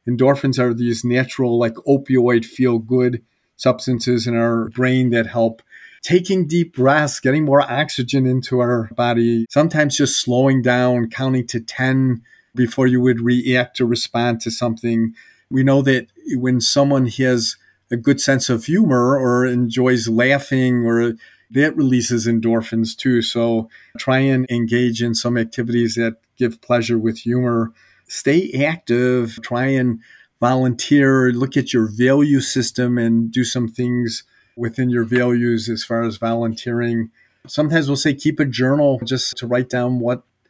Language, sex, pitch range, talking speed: English, male, 115-130 Hz, 150 wpm